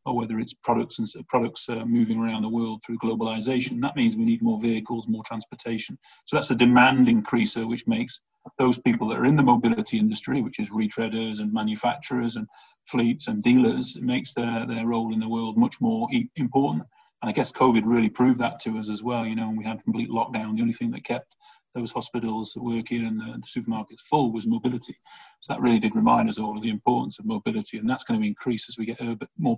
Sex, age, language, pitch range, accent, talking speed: male, 40-59, English, 115-155 Hz, British, 230 wpm